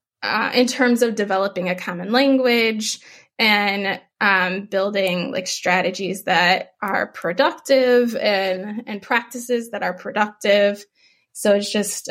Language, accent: English, American